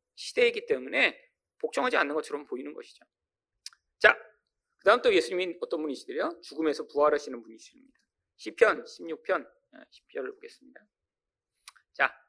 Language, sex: Korean, male